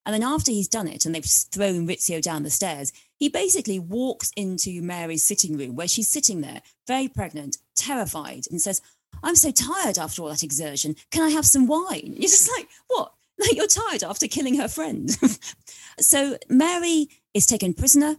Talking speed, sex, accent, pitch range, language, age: 190 wpm, female, British, 155-235 Hz, English, 30-49